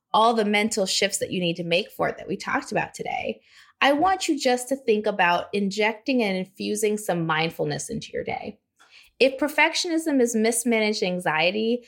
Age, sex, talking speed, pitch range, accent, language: 20-39, female, 180 wpm, 185-245 Hz, American, English